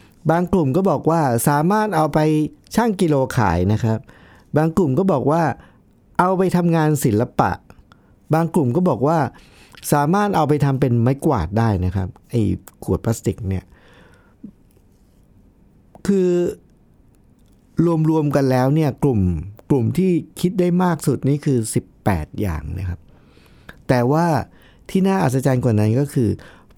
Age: 60-79